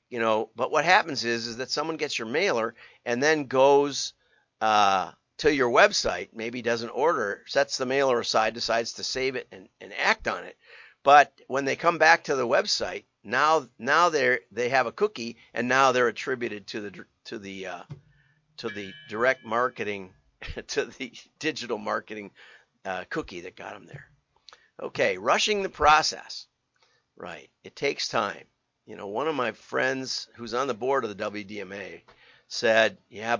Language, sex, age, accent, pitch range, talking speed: English, male, 50-69, American, 115-150 Hz, 170 wpm